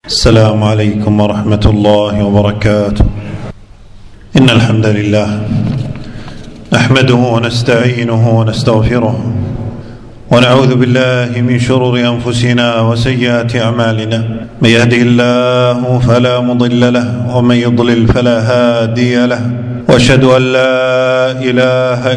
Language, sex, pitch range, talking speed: Arabic, male, 120-130 Hz, 90 wpm